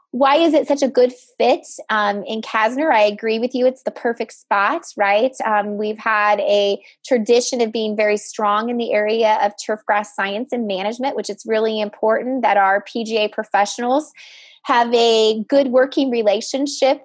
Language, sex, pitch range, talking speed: English, female, 210-250 Hz, 175 wpm